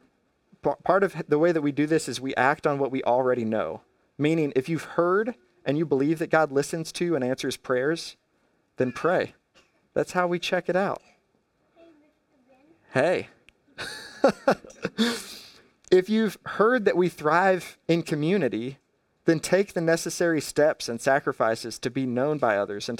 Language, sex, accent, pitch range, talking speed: English, male, American, 125-165 Hz, 155 wpm